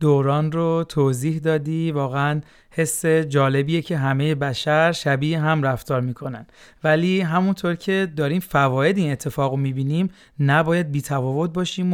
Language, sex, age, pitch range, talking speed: Persian, male, 40-59, 145-190 Hz, 130 wpm